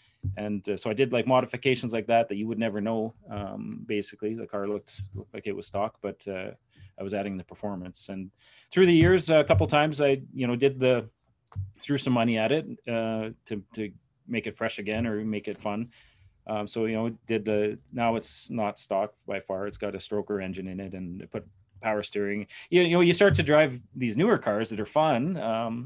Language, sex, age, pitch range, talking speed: English, male, 30-49, 105-120 Hz, 225 wpm